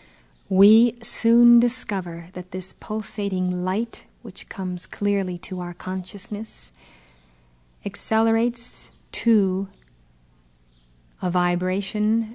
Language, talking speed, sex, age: English, 85 wpm, female, 40-59